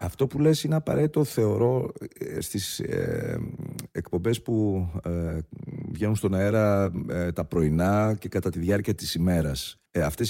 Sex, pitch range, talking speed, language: male, 90-120 Hz, 120 wpm, Greek